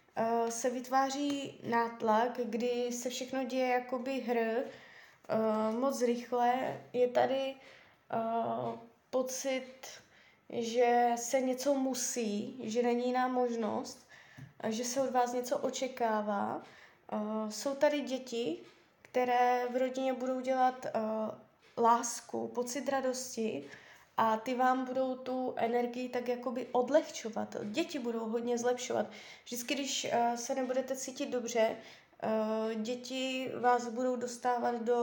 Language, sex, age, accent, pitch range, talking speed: Czech, female, 20-39, native, 235-270 Hz, 110 wpm